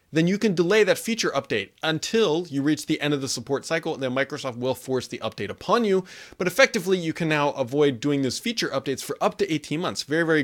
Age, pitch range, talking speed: 30-49, 130-185 Hz, 240 wpm